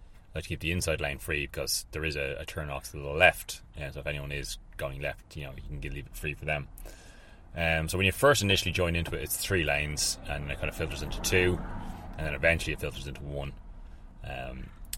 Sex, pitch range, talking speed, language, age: male, 70-90 Hz, 235 wpm, English, 30-49